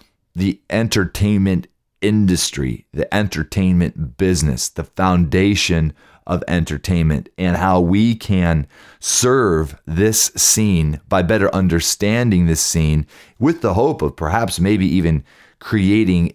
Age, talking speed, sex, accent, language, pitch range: 30-49, 110 wpm, male, American, English, 85-110 Hz